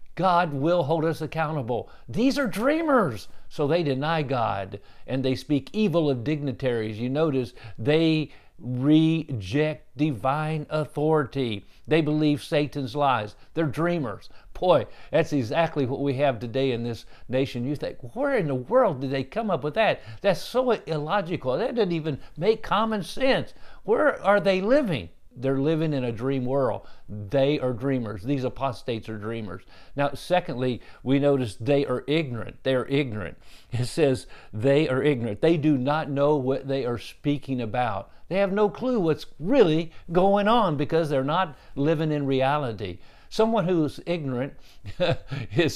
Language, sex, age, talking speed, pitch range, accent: English, male, 50-69, 155 wpm, 125-160 Hz, American